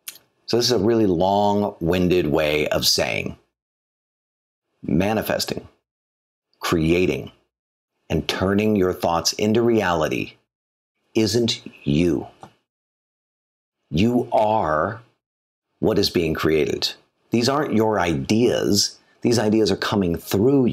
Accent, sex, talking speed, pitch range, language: American, male, 100 wpm, 85-120 Hz, English